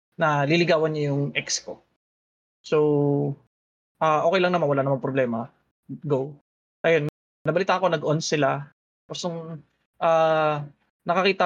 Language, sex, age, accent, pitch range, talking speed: English, male, 20-39, Filipino, 140-180 Hz, 125 wpm